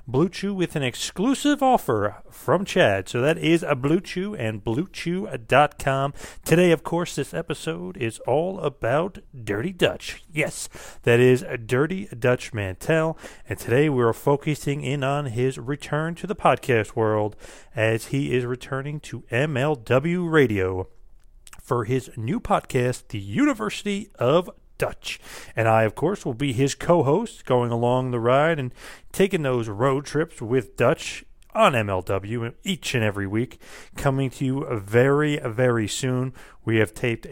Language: English